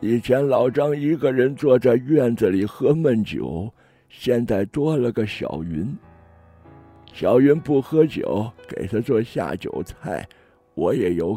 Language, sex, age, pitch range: Chinese, male, 60-79, 100-150 Hz